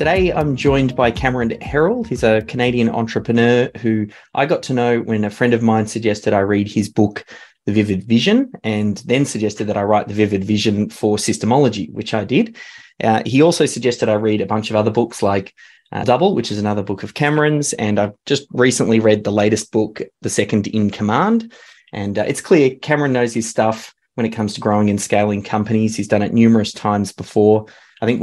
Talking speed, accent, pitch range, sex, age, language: 210 wpm, Australian, 105-120 Hz, male, 20-39, English